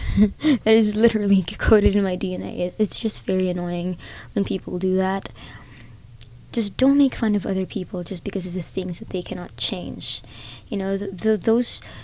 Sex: female